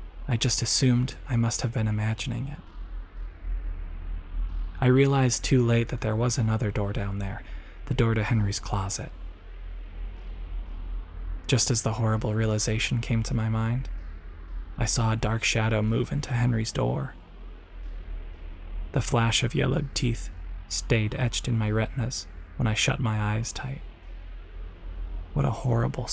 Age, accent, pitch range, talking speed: 20-39, American, 80-120 Hz, 140 wpm